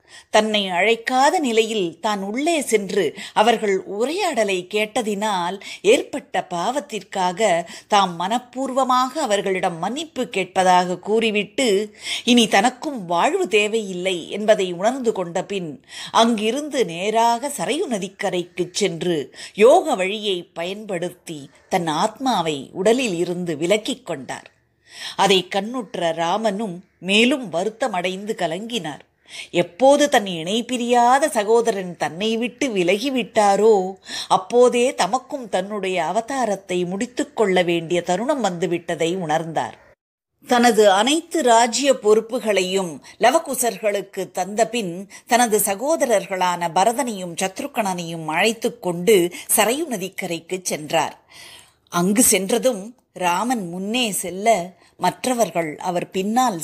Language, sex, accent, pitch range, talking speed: Tamil, female, native, 180-235 Hz, 90 wpm